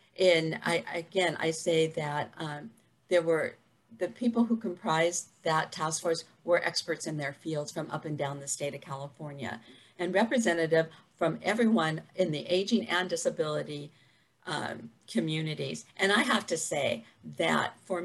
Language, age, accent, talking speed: English, 50-69, American, 155 wpm